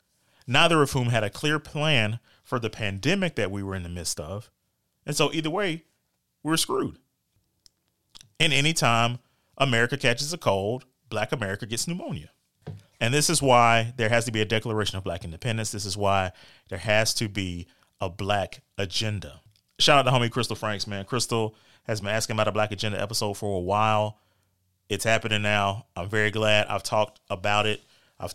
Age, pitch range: 30-49, 100-125 Hz